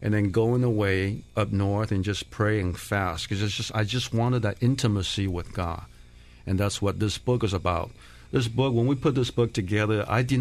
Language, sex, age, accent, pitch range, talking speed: English, male, 50-69, American, 95-115 Hz, 215 wpm